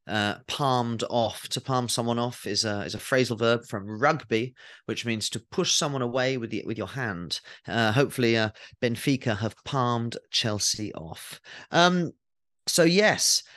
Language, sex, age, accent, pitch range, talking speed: English, male, 30-49, British, 125-175 Hz, 165 wpm